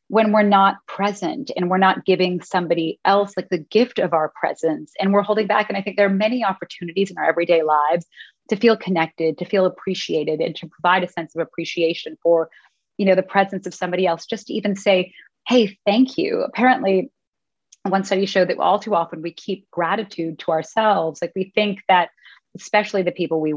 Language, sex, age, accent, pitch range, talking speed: English, female, 30-49, American, 170-210 Hz, 205 wpm